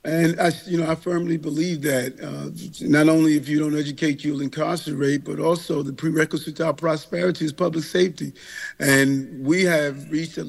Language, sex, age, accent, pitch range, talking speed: English, male, 50-69, American, 145-160 Hz, 175 wpm